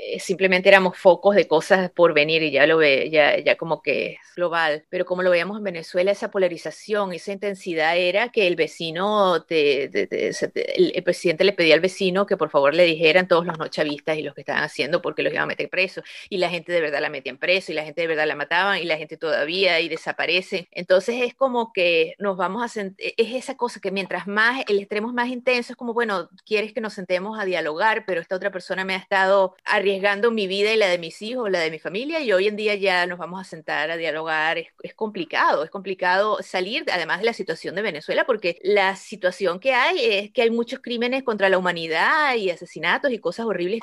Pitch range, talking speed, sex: 175-235 Hz, 235 wpm, female